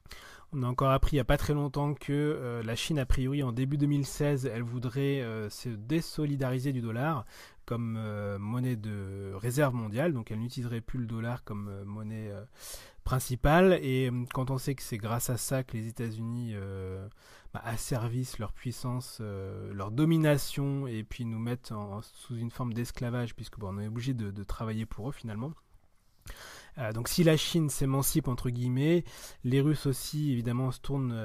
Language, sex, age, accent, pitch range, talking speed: French, male, 30-49, French, 110-135 Hz, 190 wpm